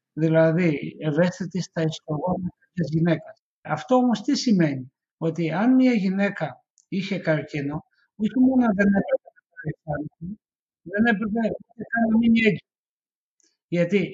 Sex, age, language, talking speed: male, 60-79, Greek, 130 wpm